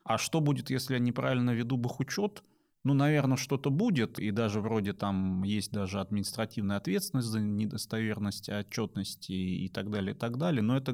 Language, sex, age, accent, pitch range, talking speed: Russian, male, 30-49, native, 100-125 Hz, 175 wpm